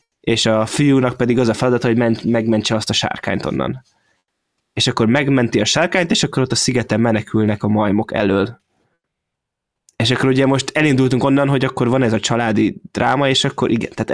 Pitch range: 110-135 Hz